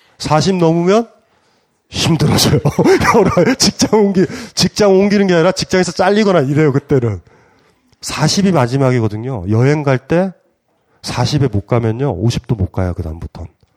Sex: male